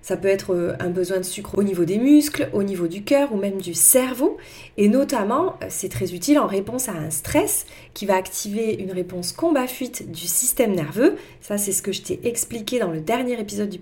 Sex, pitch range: female, 185-250 Hz